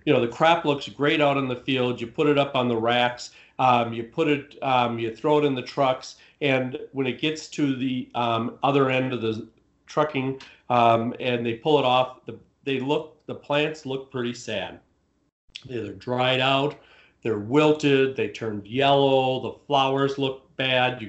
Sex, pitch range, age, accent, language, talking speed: male, 120-145 Hz, 50-69, American, English, 180 wpm